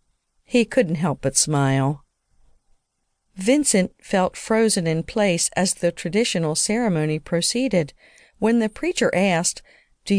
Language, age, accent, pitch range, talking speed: English, 50-69, American, 150-200 Hz, 120 wpm